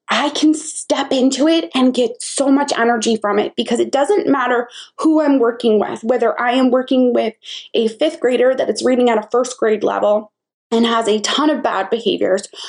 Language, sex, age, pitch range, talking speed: English, female, 20-39, 225-290 Hz, 205 wpm